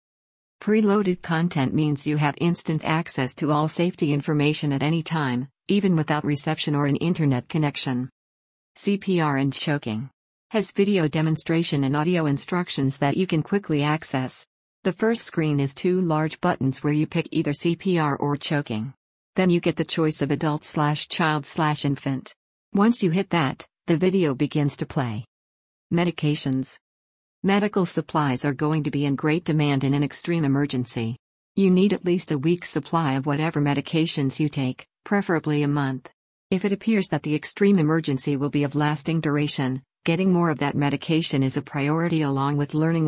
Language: English